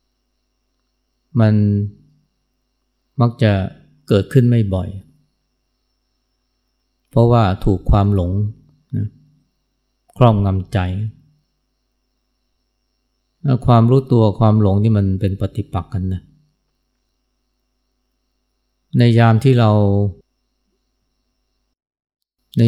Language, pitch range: Thai, 100-130 Hz